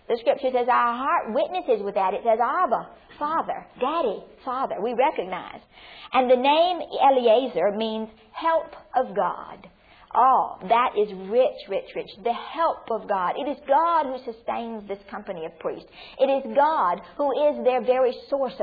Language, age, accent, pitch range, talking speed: English, 50-69, American, 205-275 Hz, 165 wpm